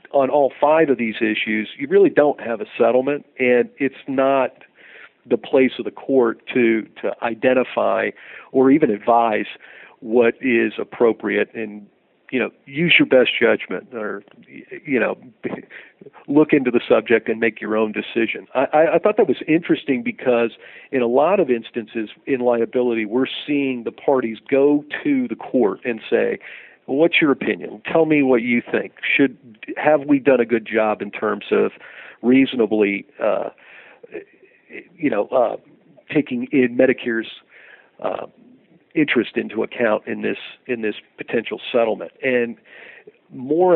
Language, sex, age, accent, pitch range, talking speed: English, male, 50-69, American, 115-145 Hz, 150 wpm